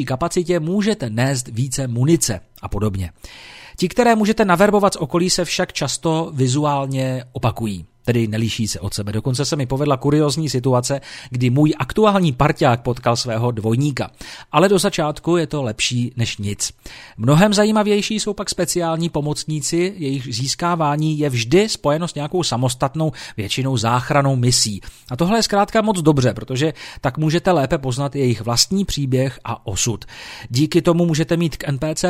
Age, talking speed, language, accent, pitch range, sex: 40-59, 155 wpm, Czech, native, 125-170 Hz, male